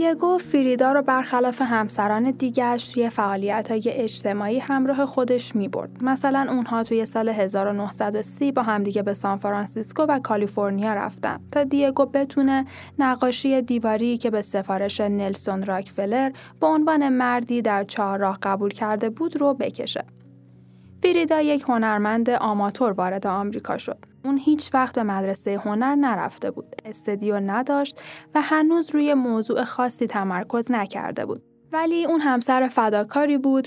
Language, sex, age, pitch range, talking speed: Persian, female, 10-29, 210-270 Hz, 135 wpm